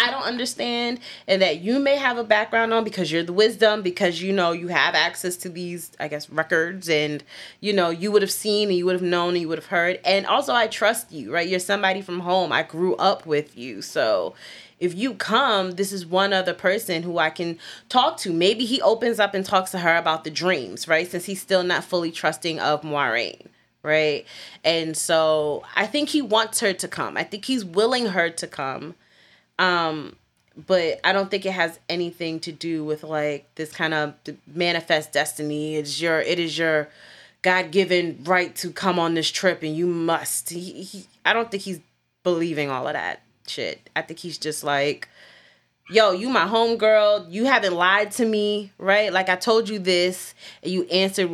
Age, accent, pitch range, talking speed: 30-49, American, 160-195 Hz, 205 wpm